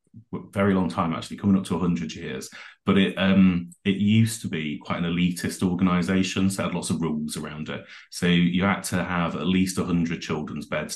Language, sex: English, male